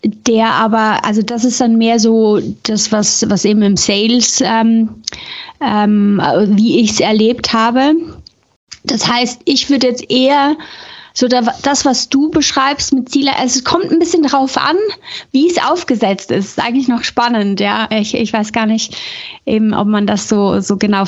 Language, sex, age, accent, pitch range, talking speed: German, female, 30-49, German, 210-260 Hz, 175 wpm